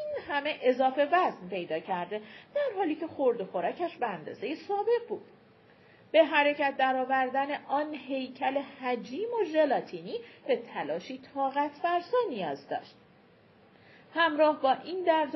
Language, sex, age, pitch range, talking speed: Persian, female, 40-59, 230-310 Hz, 130 wpm